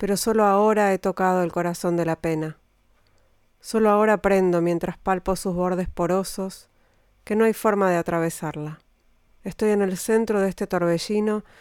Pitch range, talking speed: 170-210 Hz, 160 wpm